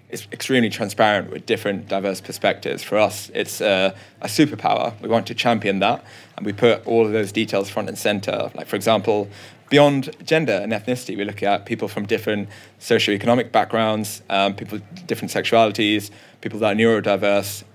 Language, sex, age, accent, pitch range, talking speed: English, male, 20-39, British, 100-115 Hz, 175 wpm